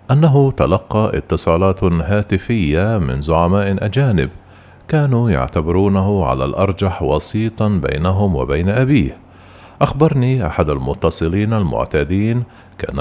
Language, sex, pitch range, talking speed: Arabic, male, 85-115 Hz, 90 wpm